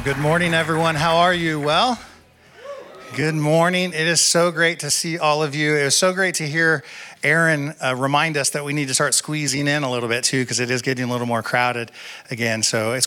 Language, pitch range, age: English, 130-175 Hz, 40-59